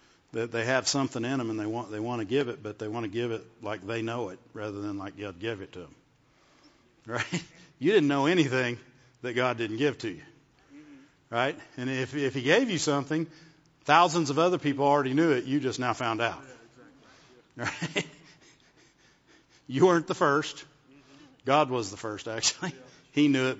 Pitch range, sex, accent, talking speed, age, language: 120-145 Hz, male, American, 195 wpm, 50-69, English